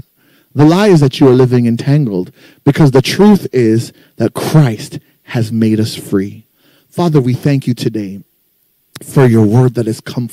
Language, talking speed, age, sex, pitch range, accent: English, 170 wpm, 30-49, male, 120-145 Hz, American